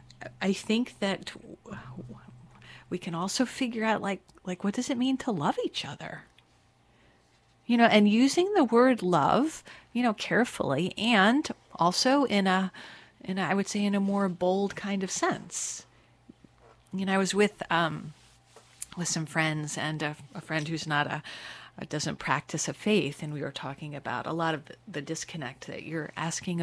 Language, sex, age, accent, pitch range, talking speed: English, female, 40-59, American, 155-205 Hz, 175 wpm